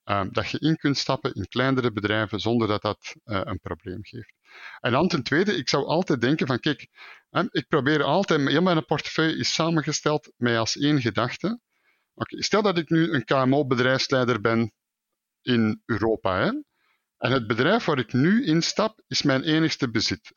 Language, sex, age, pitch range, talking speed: Dutch, male, 50-69, 115-160 Hz, 170 wpm